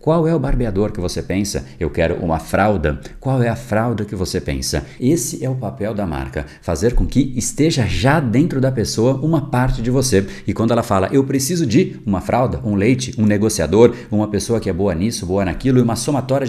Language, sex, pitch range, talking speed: Portuguese, male, 90-120 Hz, 215 wpm